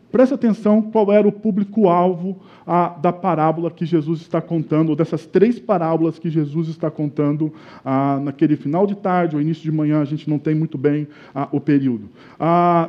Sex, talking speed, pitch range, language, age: male, 180 wpm, 165-225 Hz, Portuguese, 20-39